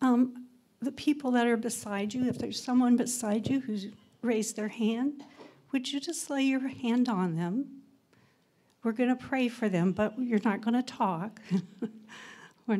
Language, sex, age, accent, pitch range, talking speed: English, female, 60-79, American, 205-245 Hz, 175 wpm